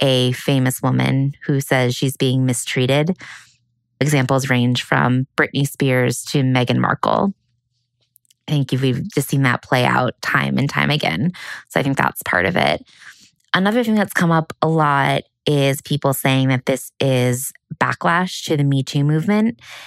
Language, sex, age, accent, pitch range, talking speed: English, female, 20-39, American, 130-155 Hz, 165 wpm